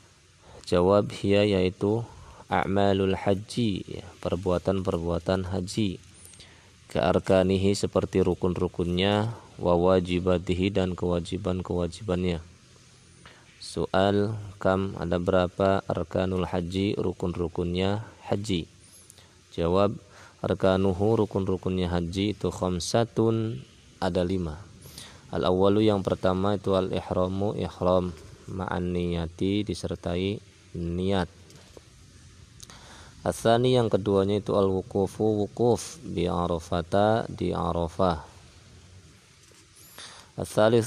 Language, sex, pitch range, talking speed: Indonesian, male, 90-100 Hz, 70 wpm